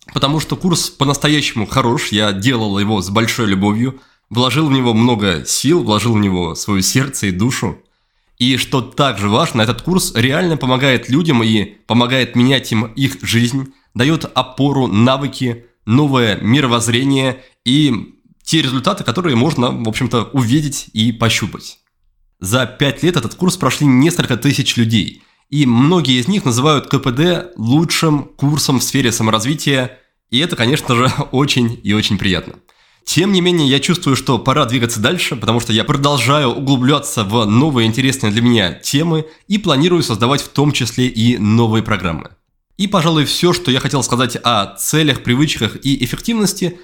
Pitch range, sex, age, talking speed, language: 115-150 Hz, male, 20-39, 155 wpm, Russian